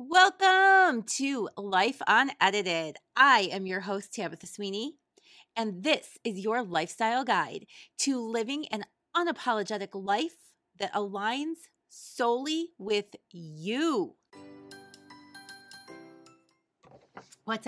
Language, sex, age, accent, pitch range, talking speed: English, female, 30-49, American, 190-275 Hz, 90 wpm